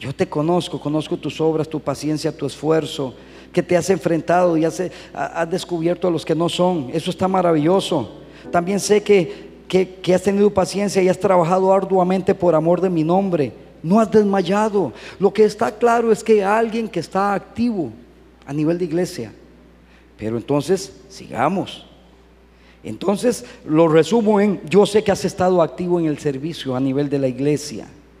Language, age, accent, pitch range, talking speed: Spanish, 40-59, Mexican, 145-195 Hz, 175 wpm